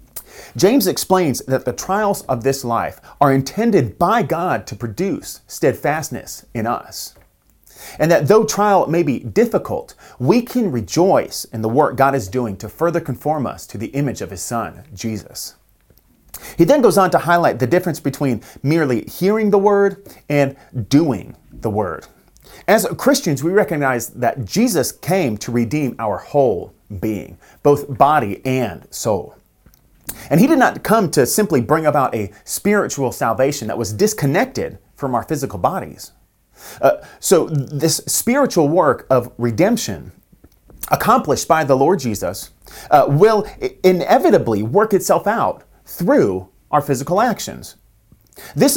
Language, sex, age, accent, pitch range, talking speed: English, male, 30-49, American, 120-185 Hz, 145 wpm